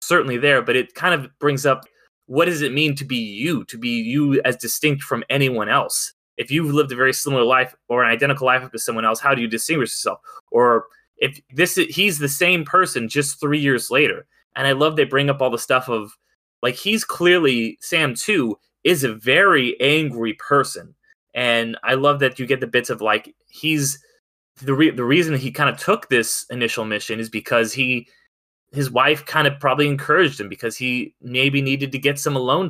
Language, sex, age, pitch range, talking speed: English, male, 20-39, 120-145 Hz, 210 wpm